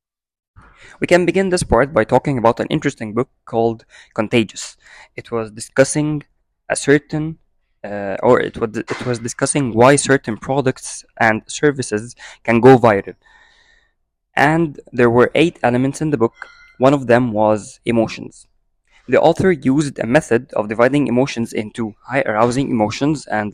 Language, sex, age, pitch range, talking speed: Arabic, male, 20-39, 110-140 Hz, 150 wpm